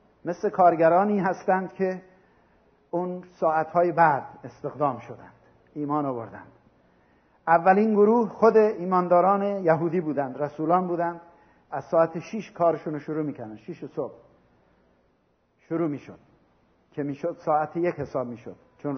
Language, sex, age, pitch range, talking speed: Persian, male, 60-79, 155-205 Hz, 115 wpm